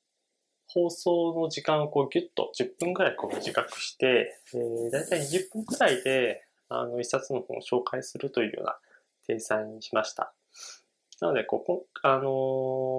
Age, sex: 20-39, male